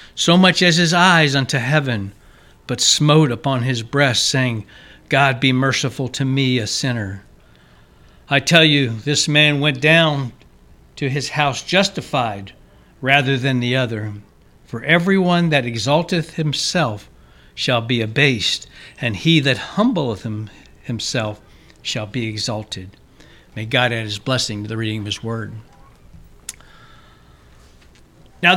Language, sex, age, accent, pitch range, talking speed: English, male, 60-79, American, 110-155 Hz, 130 wpm